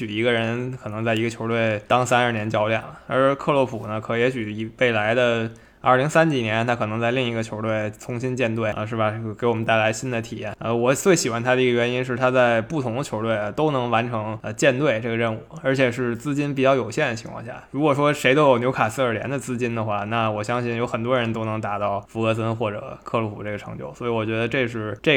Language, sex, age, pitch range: Chinese, male, 20-39, 110-130 Hz